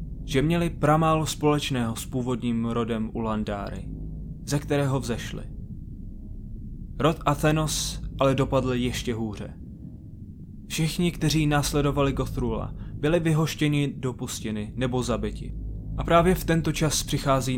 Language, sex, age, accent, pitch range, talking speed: Czech, male, 20-39, native, 115-150 Hz, 110 wpm